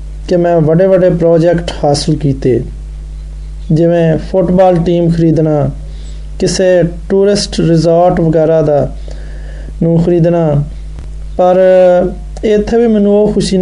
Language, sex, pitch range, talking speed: Hindi, male, 145-185 Hz, 100 wpm